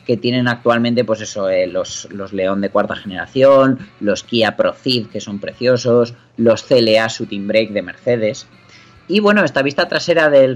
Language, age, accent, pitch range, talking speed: Spanish, 30-49, Spanish, 110-140 Hz, 170 wpm